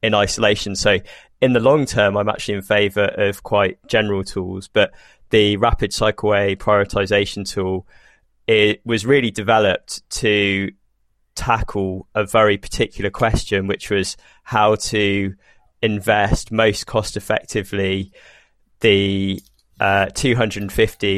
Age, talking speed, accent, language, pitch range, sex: 20-39, 115 wpm, British, English, 100-110 Hz, male